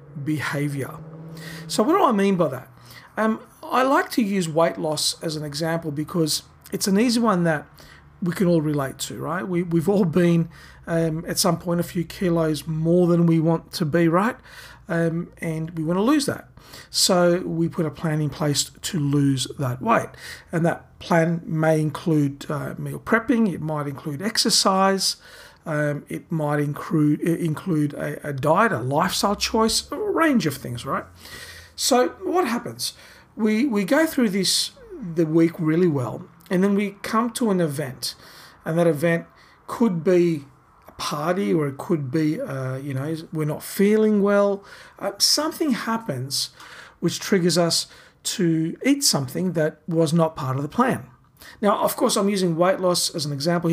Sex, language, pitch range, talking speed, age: male, English, 155-195 Hz, 175 wpm, 40-59